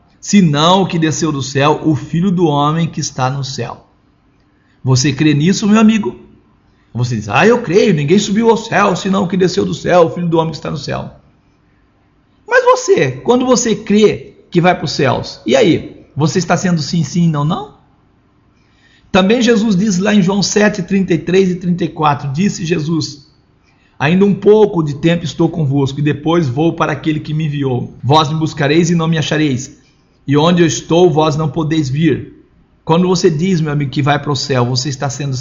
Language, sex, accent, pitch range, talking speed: Portuguese, male, Brazilian, 150-200 Hz, 200 wpm